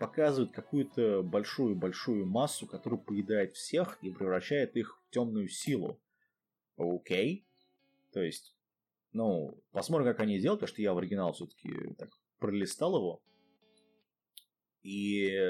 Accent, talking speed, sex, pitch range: native, 130 wpm, male, 95-145 Hz